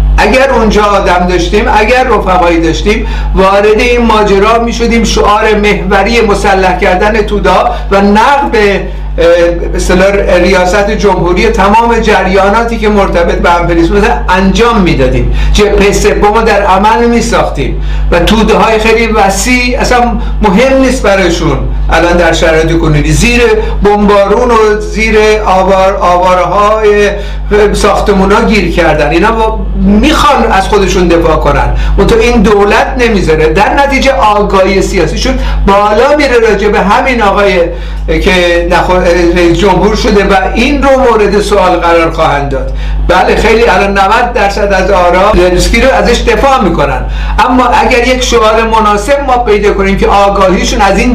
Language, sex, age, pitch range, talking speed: Persian, male, 60-79, 185-220 Hz, 140 wpm